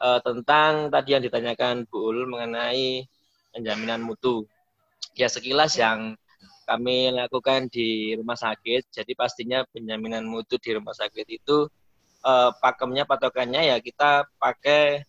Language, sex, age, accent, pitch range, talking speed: Indonesian, male, 20-39, native, 110-140 Hz, 125 wpm